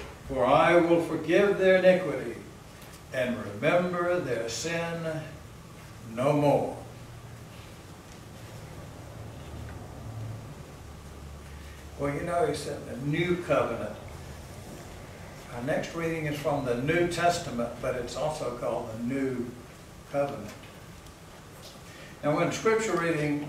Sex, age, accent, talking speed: male, 60-79, American, 100 wpm